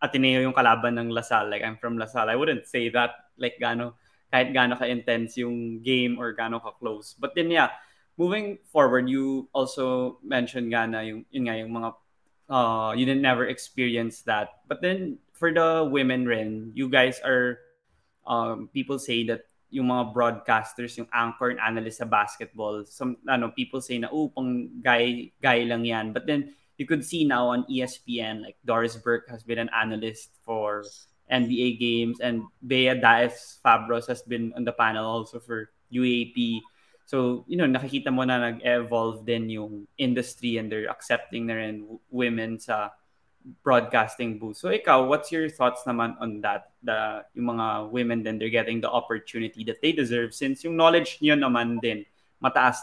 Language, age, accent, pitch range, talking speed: Filipino, 20-39, native, 115-130 Hz, 170 wpm